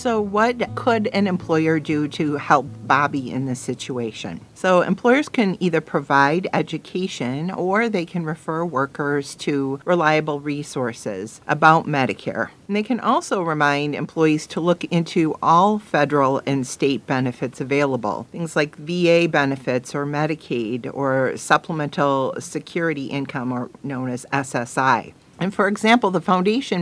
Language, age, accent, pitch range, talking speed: English, 50-69, American, 140-185 Hz, 140 wpm